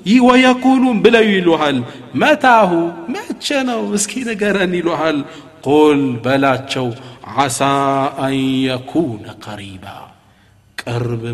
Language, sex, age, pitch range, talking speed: Amharic, male, 50-69, 110-140 Hz, 80 wpm